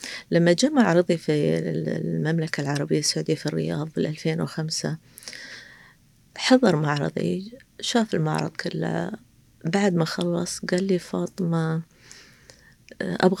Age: 30-49